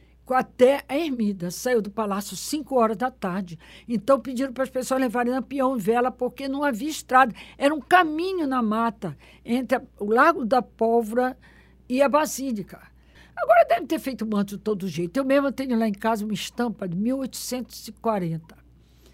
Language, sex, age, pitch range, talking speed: Portuguese, female, 60-79, 200-255 Hz, 170 wpm